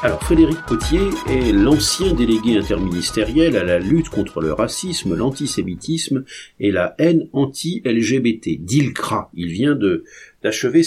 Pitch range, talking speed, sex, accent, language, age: 110-170 Hz, 125 wpm, male, French, French, 50-69